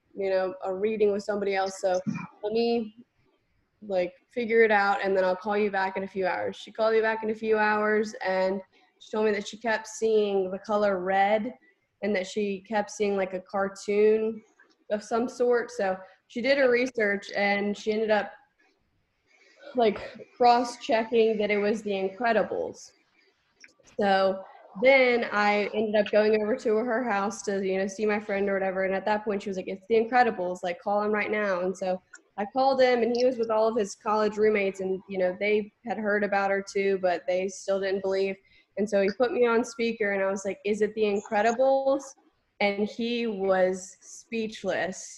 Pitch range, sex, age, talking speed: 195-235 Hz, female, 20-39, 200 wpm